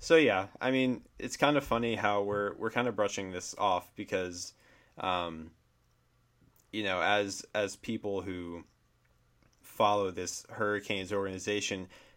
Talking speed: 140 wpm